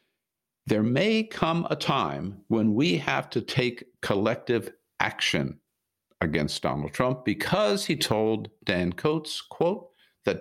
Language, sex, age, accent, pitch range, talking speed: English, male, 60-79, American, 100-155 Hz, 125 wpm